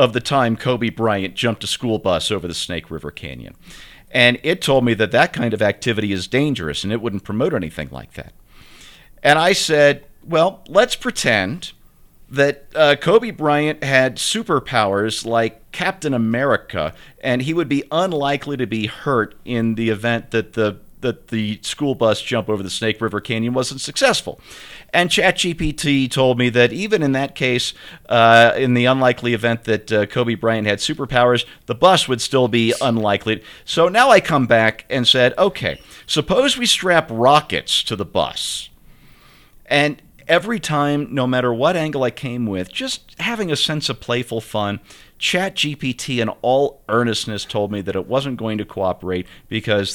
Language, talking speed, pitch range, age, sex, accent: English, 170 wpm, 110-140 Hz, 50-69, male, American